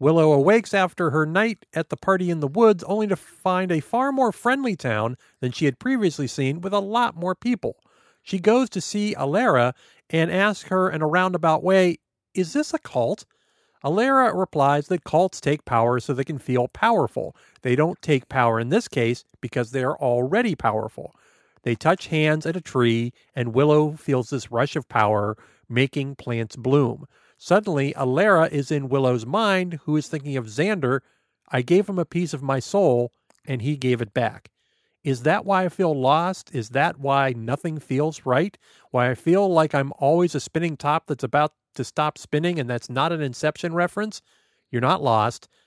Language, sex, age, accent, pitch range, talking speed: English, male, 50-69, American, 130-185 Hz, 190 wpm